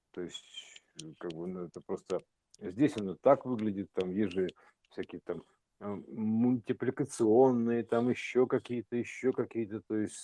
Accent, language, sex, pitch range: native, Russian, male, 105-140 Hz